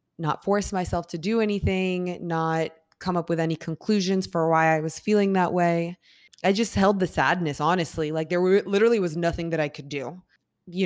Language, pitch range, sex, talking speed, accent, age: English, 155-180 Hz, female, 195 wpm, American, 20-39